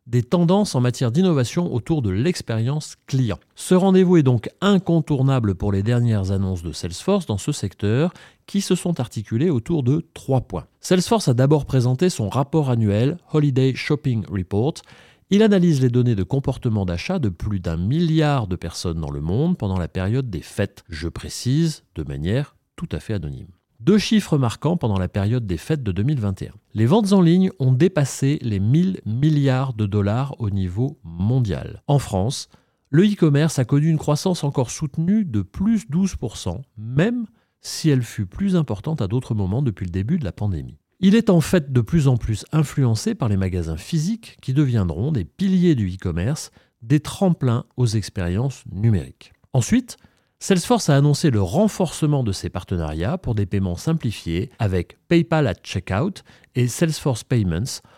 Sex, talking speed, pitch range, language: male, 170 wpm, 100-155 Hz, French